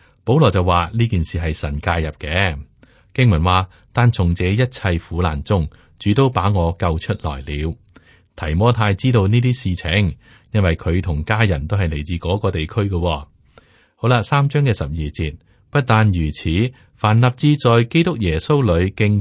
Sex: male